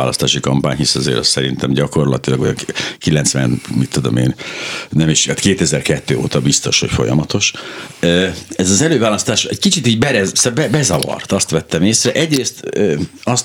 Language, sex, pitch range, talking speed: Hungarian, male, 80-105 Hz, 145 wpm